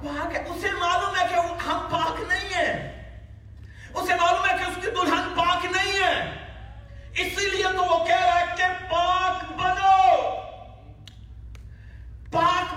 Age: 40-59